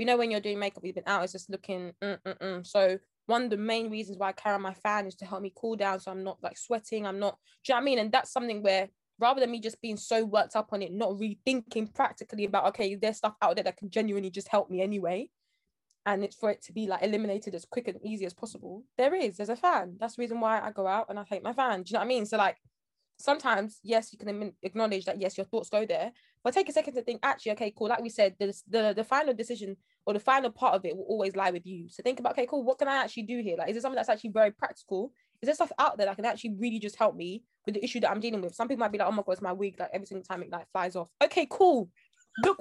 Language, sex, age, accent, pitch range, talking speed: English, female, 20-39, British, 195-250 Hz, 300 wpm